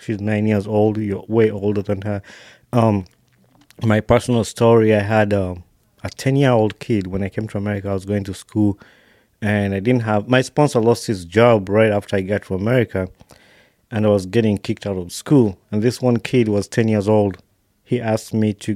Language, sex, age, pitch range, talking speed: English, male, 30-49, 100-125 Hz, 200 wpm